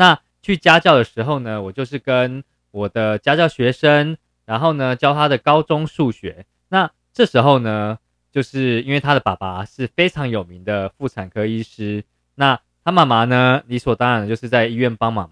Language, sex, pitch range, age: Chinese, male, 105-155 Hz, 20-39